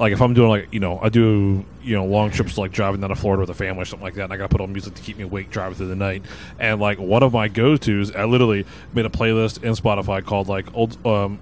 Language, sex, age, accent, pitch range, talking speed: English, male, 20-39, American, 95-115 Hz, 295 wpm